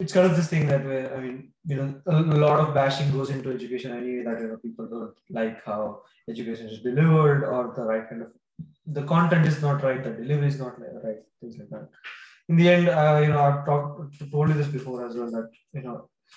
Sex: male